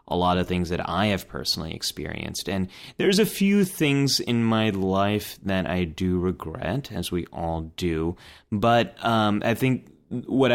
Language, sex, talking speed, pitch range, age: English, male, 170 wpm, 90-120 Hz, 30-49